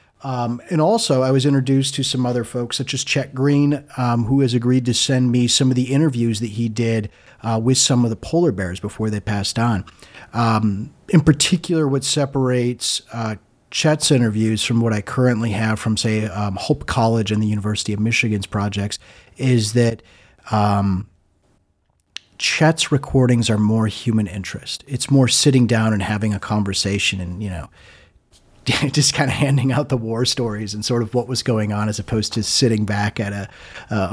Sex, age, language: male, 40-59, English